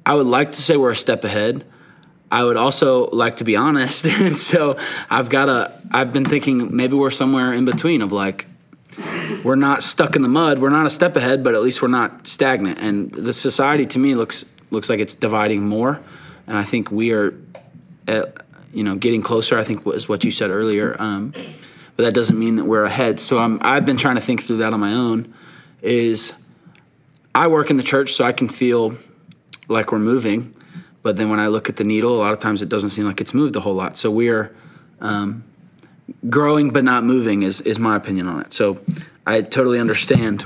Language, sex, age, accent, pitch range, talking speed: English, male, 20-39, American, 110-145 Hz, 220 wpm